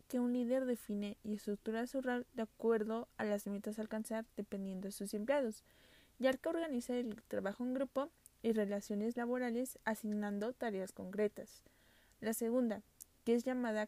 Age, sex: 20-39, female